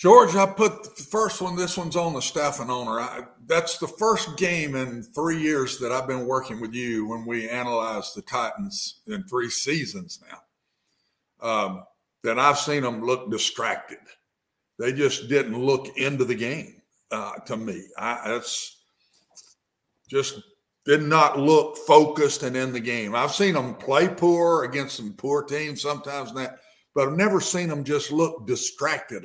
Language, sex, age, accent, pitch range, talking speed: English, male, 50-69, American, 130-170 Hz, 165 wpm